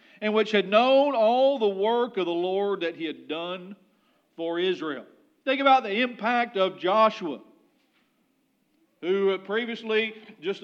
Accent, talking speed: American, 140 wpm